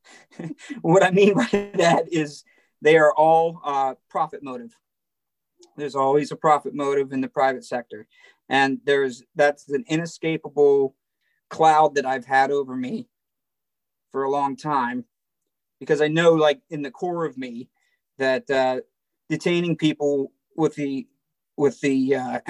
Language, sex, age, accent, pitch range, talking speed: English, male, 40-59, American, 140-170 Hz, 145 wpm